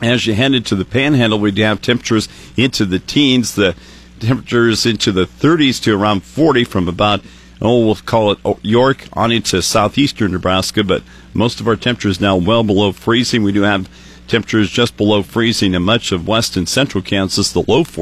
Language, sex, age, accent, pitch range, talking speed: English, male, 50-69, American, 95-120 Hz, 190 wpm